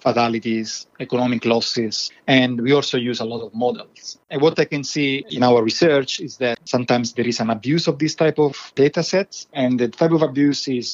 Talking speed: 210 wpm